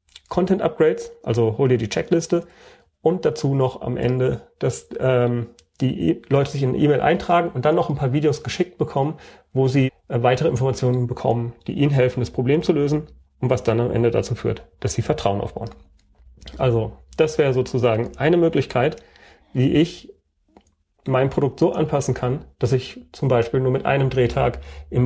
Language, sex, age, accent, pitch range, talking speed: German, male, 40-59, German, 115-140 Hz, 180 wpm